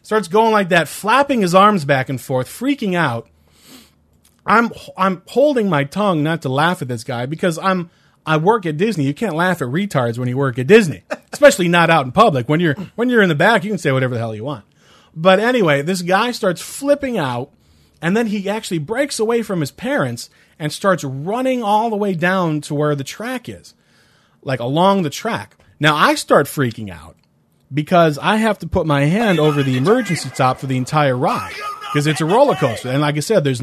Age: 30-49